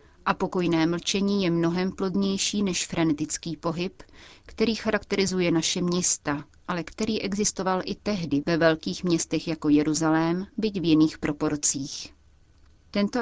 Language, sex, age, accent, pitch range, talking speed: Czech, female, 30-49, native, 155-190 Hz, 125 wpm